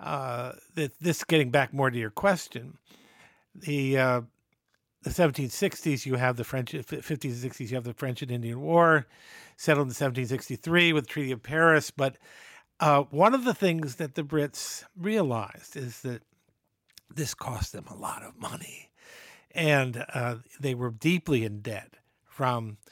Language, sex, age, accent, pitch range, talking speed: English, male, 50-69, American, 120-155 Hz, 155 wpm